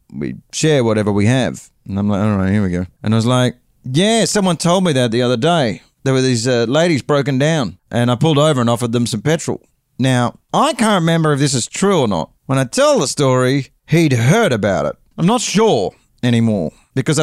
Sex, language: male, English